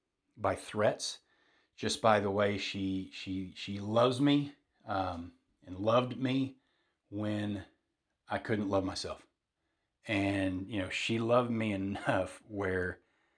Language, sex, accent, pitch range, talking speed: English, male, American, 95-110 Hz, 125 wpm